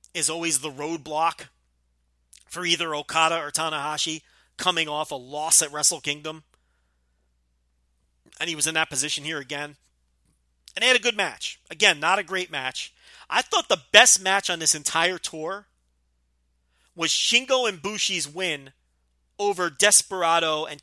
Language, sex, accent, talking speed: English, male, American, 150 wpm